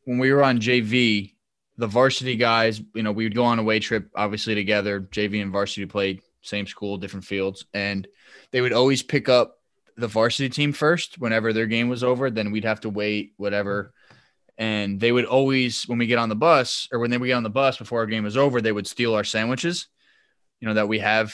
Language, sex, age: English, male, 20-39